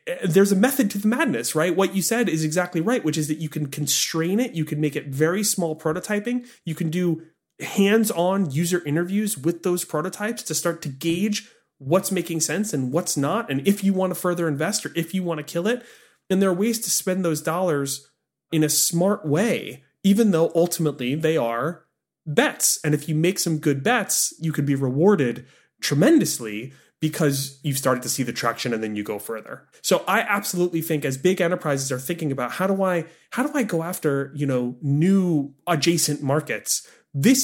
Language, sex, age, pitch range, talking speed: English, male, 30-49, 140-185 Hz, 200 wpm